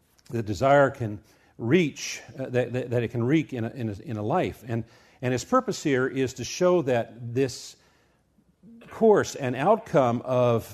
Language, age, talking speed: English, 50-69, 175 wpm